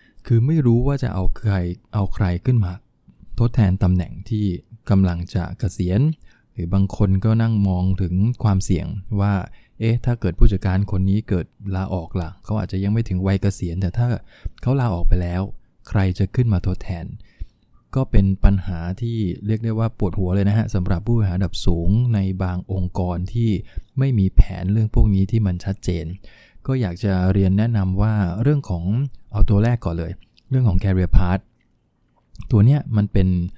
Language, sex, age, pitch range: English, male, 20-39, 95-115 Hz